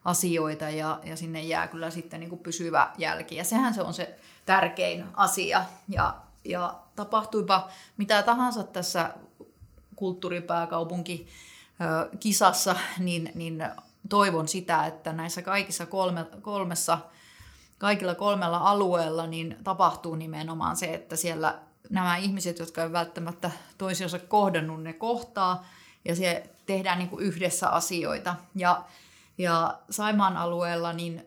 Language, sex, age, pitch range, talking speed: Finnish, female, 30-49, 170-190 Hz, 125 wpm